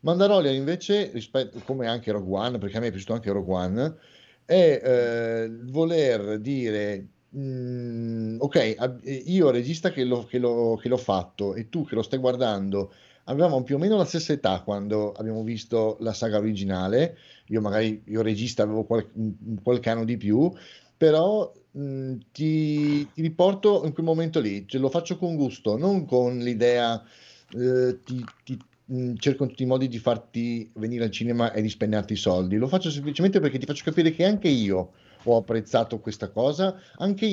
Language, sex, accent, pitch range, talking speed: Italian, male, native, 110-155 Hz, 175 wpm